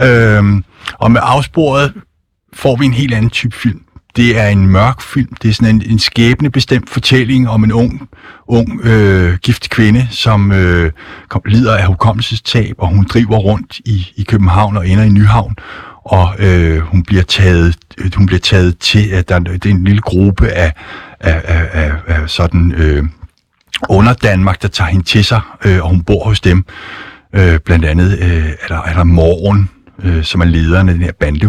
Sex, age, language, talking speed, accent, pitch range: male, 60-79, Danish, 185 wpm, native, 85-110 Hz